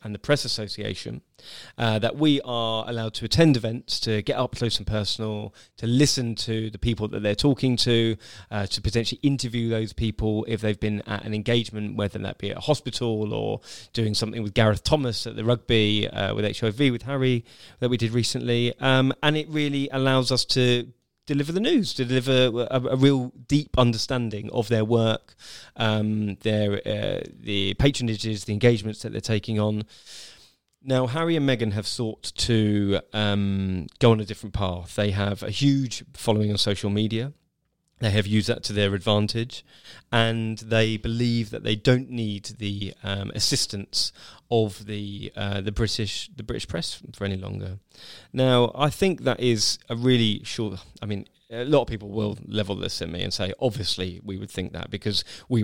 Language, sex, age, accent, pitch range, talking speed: English, male, 20-39, British, 105-120 Hz, 185 wpm